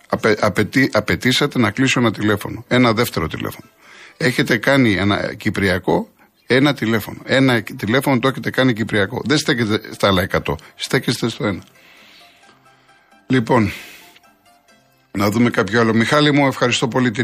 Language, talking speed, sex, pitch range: Greek, 140 wpm, male, 105-130 Hz